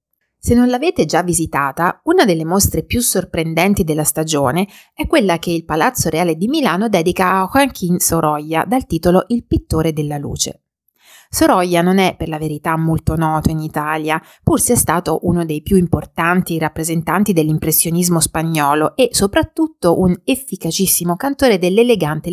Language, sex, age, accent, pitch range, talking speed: Italian, female, 30-49, native, 160-205 Hz, 150 wpm